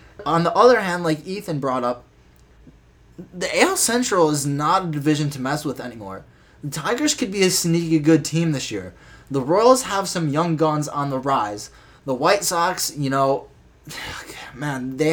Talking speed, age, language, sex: 180 wpm, 20-39, English, male